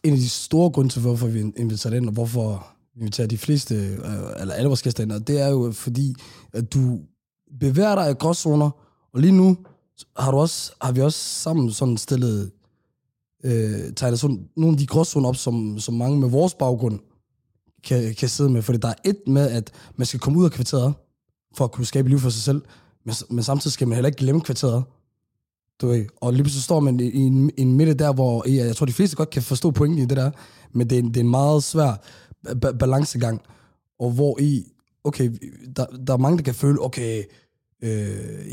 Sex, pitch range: male, 120-145 Hz